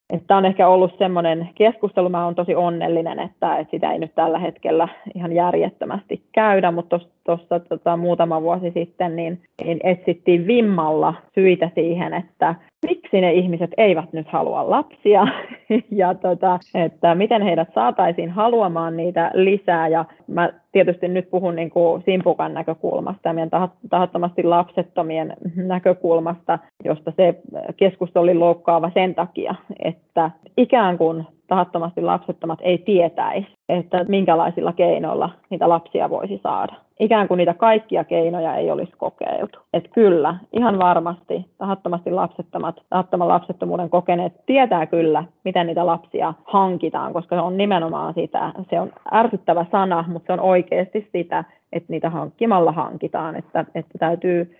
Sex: female